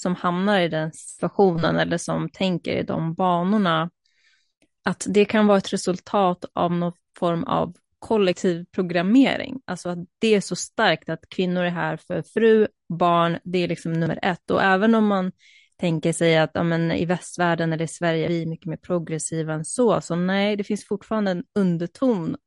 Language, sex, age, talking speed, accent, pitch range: Swedish, female, 20-39, 185 wpm, native, 170-200 Hz